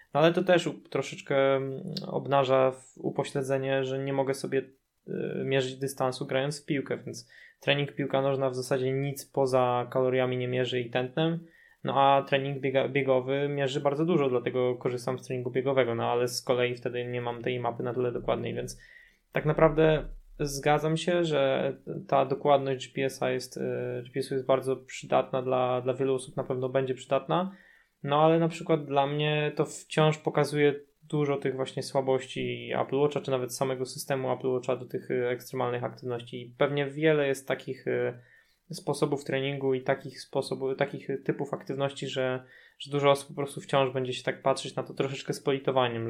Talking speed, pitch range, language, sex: 170 wpm, 130-145 Hz, Polish, male